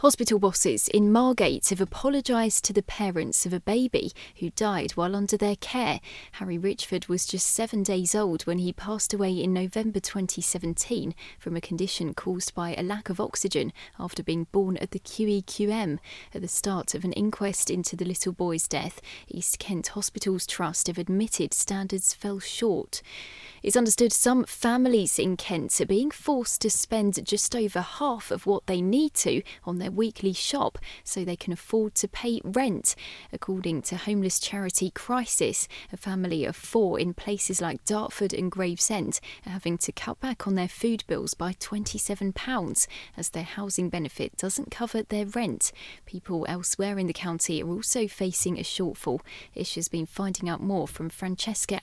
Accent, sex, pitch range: British, female, 180-215 Hz